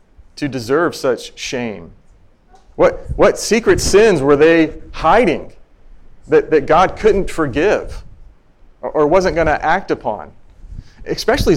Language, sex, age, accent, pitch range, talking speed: English, male, 40-59, American, 120-175 Hz, 125 wpm